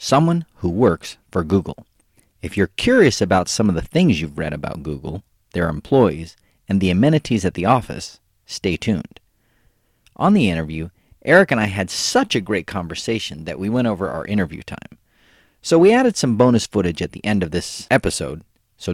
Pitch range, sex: 90-125 Hz, male